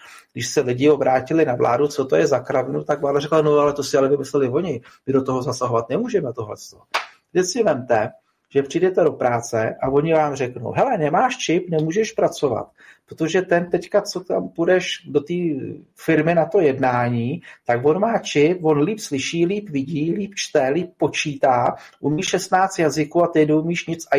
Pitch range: 130-185 Hz